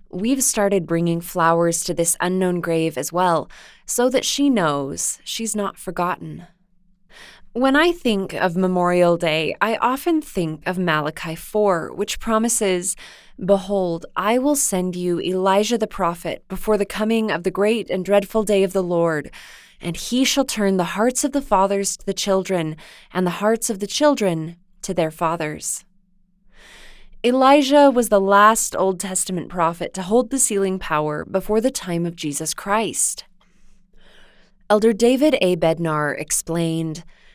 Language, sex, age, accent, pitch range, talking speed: English, female, 20-39, American, 175-215 Hz, 155 wpm